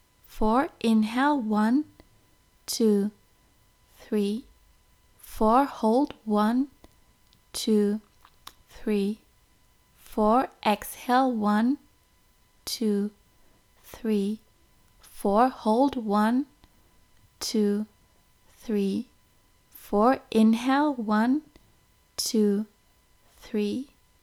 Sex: female